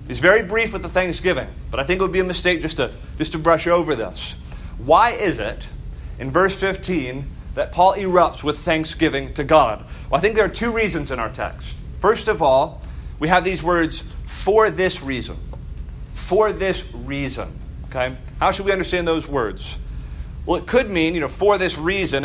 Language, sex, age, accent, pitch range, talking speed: English, male, 30-49, American, 130-180 Hz, 195 wpm